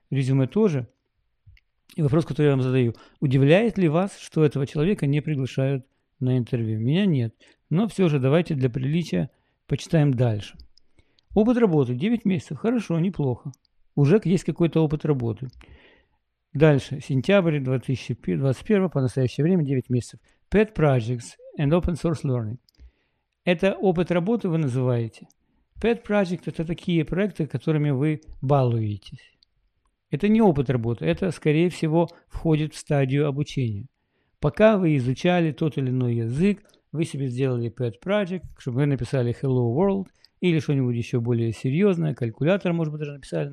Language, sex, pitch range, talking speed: English, male, 130-175 Hz, 145 wpm